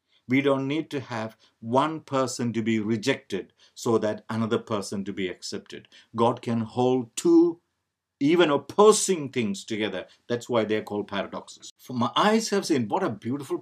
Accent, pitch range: Indian, 110-150 Hz